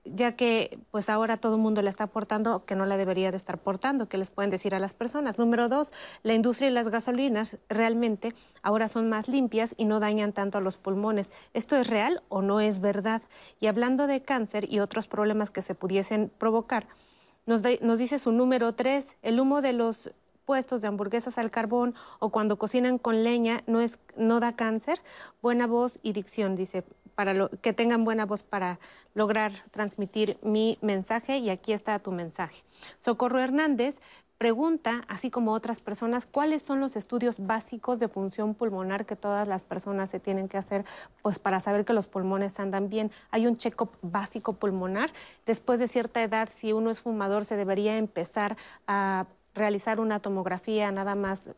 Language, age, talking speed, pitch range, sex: Spanish, 30-49, 185 wpm, 200-235 Hz, female